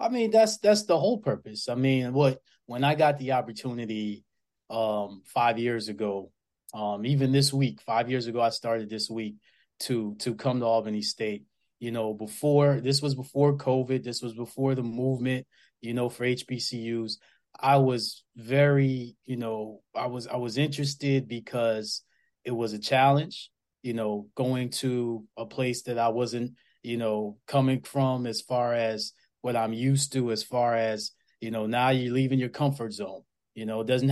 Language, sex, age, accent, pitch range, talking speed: English, male, 20-39, American, 115-135 Hz, 180 wpm